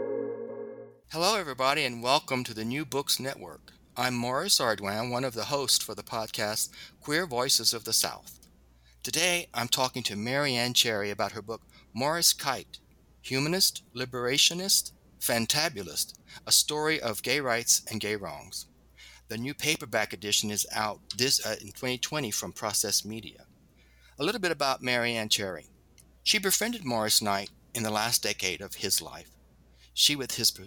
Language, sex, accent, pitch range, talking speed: English, male, American, 100-130 Hz, 160 wpm